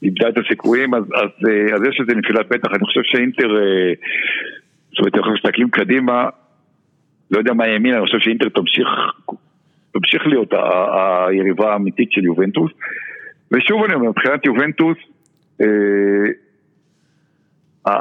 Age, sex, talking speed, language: 60-79, male, 130 wpm, Hebrew